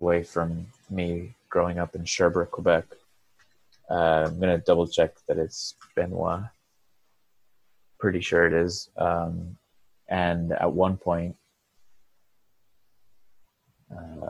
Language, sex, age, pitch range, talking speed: English, male, 20-39, 85-95 Hz, 115 wpm